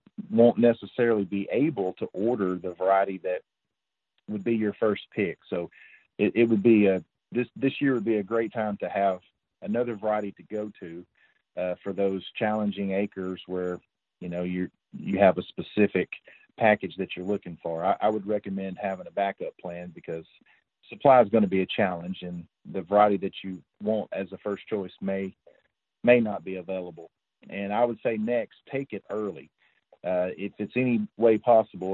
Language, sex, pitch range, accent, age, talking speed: English, male, 95-110 Hz, American, 40-59, 185 wpm